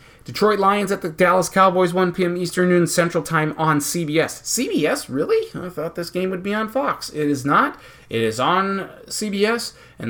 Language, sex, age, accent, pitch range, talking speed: English, male, 30-49, American, 140-175 Hz, 190 wpm